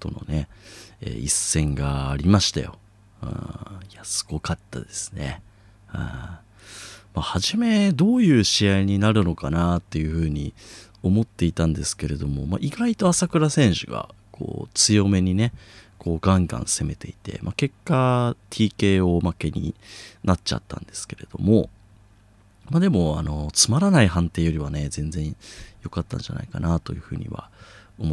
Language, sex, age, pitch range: Japanese, male, 30-49, 85-110 Hz